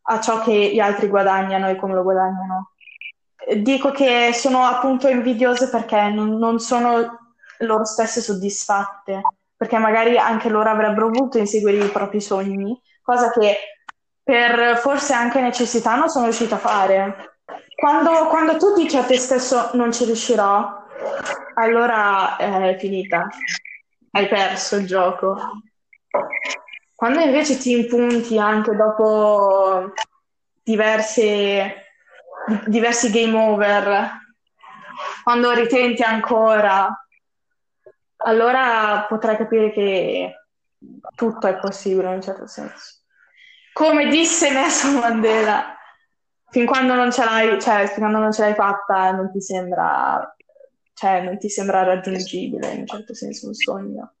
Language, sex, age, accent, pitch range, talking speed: Italian, female, 20-39, native, 200-245 Hz, 125 wpm